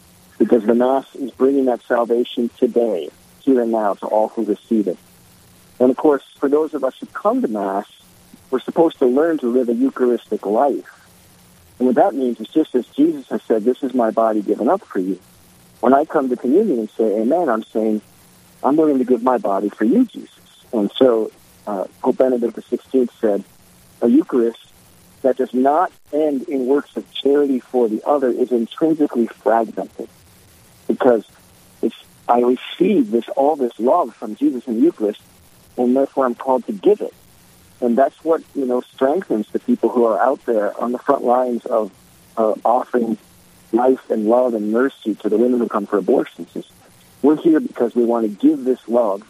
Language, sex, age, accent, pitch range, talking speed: English, male, 50-69, American, 110-135 Hz, 190 wpm